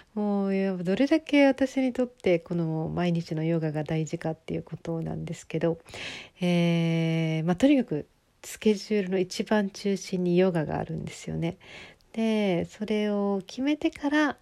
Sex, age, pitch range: female, 40-59, 175-220 Hz